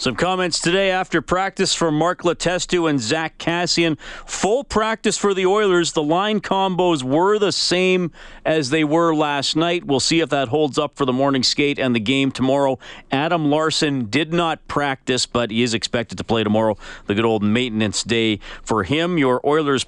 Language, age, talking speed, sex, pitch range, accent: English, 40-59, 185 wpm, male, 120-160 Hz, American